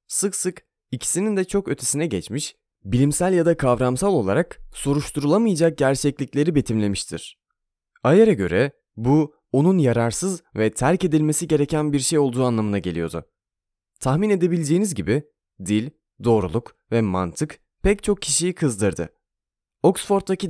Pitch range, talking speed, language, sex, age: 115-170 Hz, 120 wpm, Turkish, male, 30-49